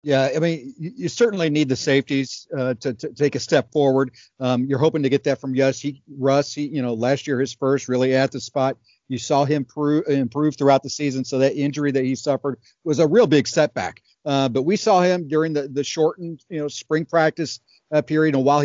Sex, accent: male, American